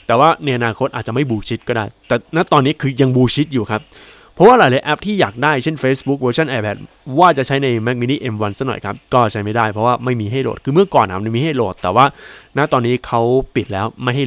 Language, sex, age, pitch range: Thai, male, 20-39, 115-155 Hz